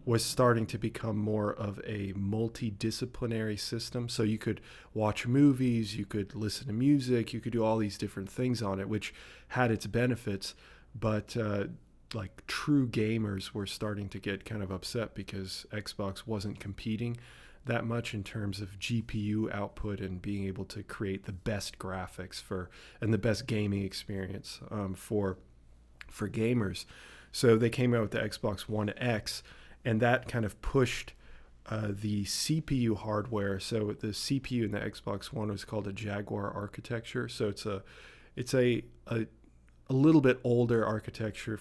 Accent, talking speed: American, 165 wpm